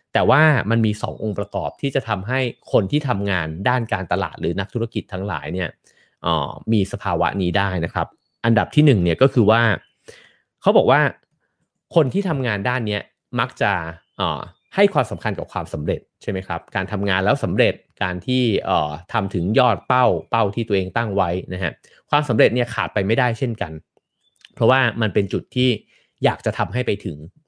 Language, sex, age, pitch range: English, male, 30-49, 95-125 Hz